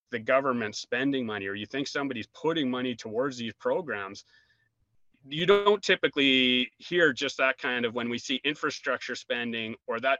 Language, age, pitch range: English, 30-49, 115-140 Hz